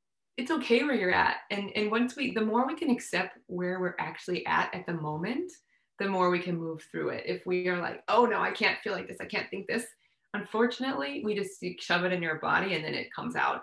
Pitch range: 175-220 Hz